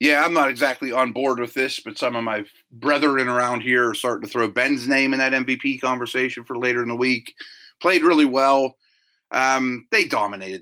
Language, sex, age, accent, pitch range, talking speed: English, male, 30-49, American, 110-135 Hz, 205 wpm